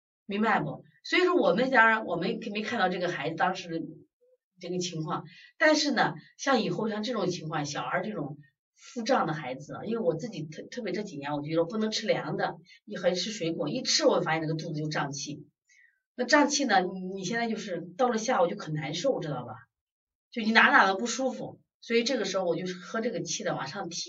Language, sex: Chinese, female